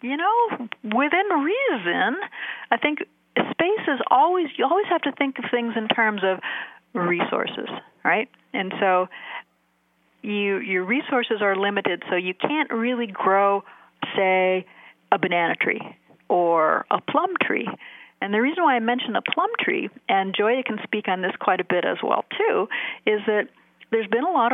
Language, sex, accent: English, female, American